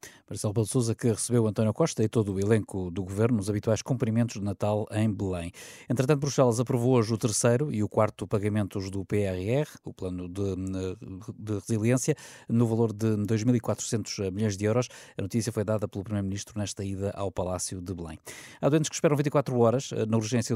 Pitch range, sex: 100-120 Hz, male